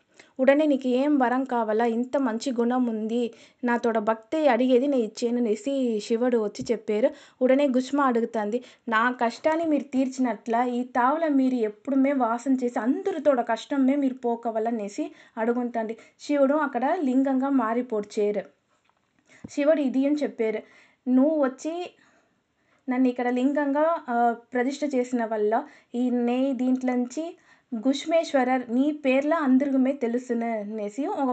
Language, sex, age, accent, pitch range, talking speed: Telugu, female, 20-39, native, 235-280 Hz, 115 wpm